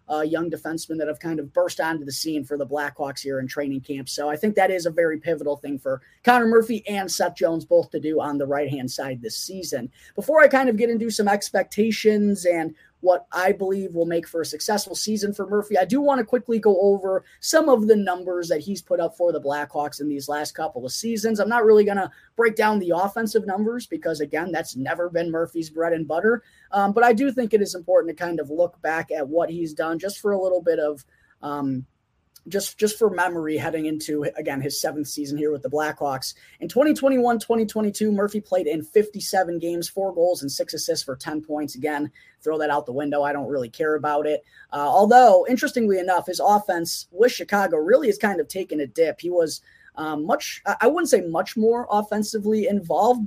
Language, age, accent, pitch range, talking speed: English, 20-39, American, 155-210 Hz, 220 wpm